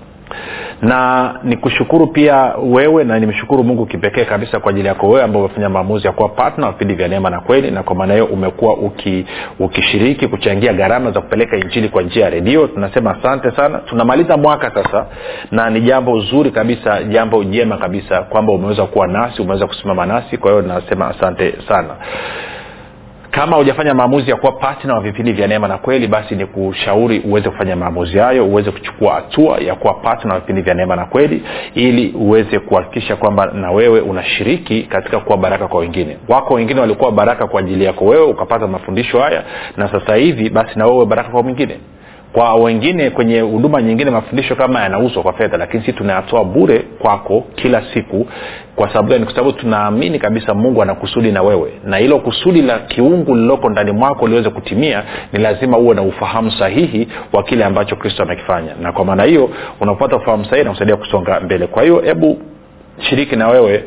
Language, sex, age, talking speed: Swahili, male, 40-59, 180 wpm